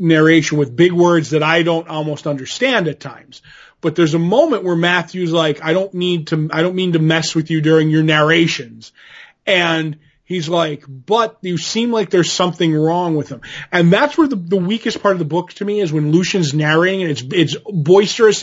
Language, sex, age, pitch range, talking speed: English, male, 20-39, 160-195 Hz, 210 wpm